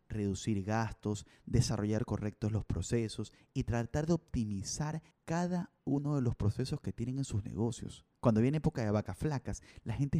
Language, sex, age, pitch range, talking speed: Spanish, male, 30-49, 105-135 Hz, 165 wpm